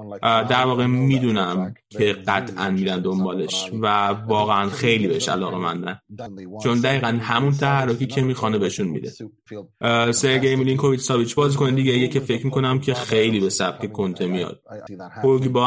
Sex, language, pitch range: male, Persian, 105-135 Hz